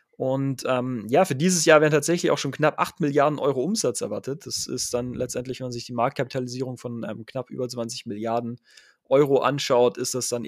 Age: 20-39